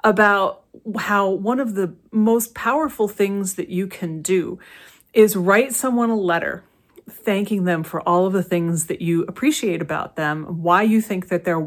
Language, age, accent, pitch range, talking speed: English, 40-59, American, 185-240 Hz, 175 wpm